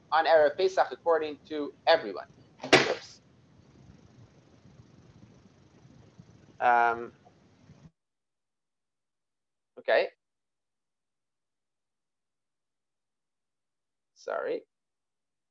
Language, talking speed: English, 40 wpm